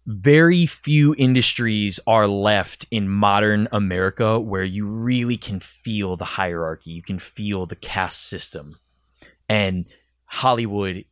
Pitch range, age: 95-125 Hz, 20-39